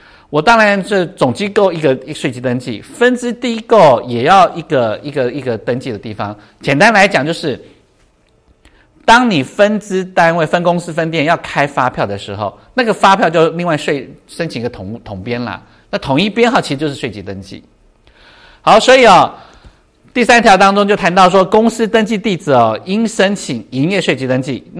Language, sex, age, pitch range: Chinese, male, 50-69, 125-205 Hz